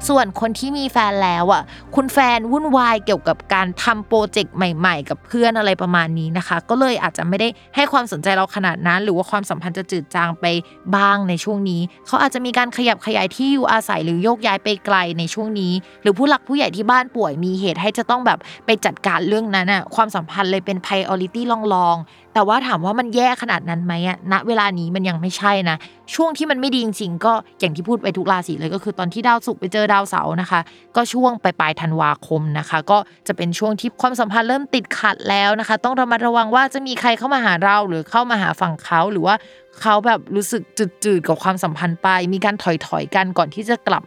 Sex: female